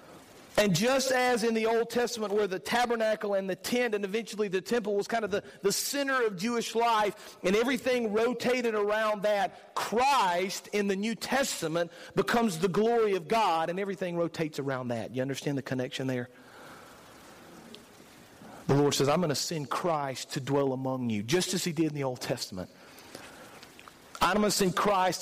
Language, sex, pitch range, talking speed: English, male, 160-225 Hz, 180 wpm